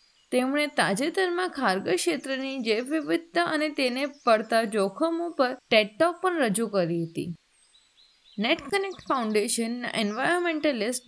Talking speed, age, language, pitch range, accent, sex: 110 wpm, 20-39, Gujarati, 215-315 Hz, native, female